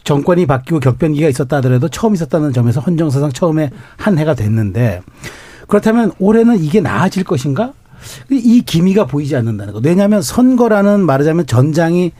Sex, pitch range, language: male, 130-180 Hz, Korean